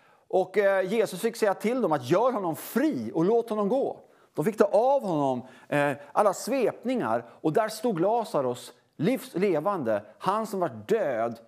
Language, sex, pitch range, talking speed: English, male, 145-205 Hz, 155 wpm